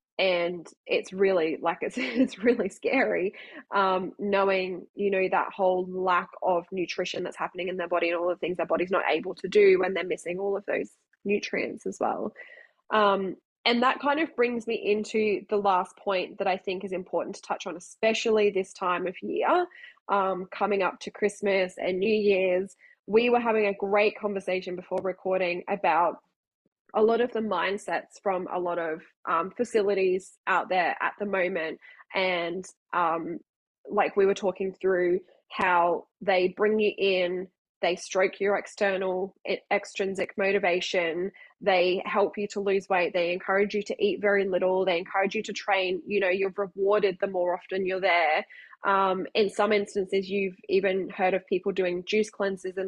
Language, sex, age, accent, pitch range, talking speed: English, female, 10-29, Australian, 180-205 Hz, 180 wpm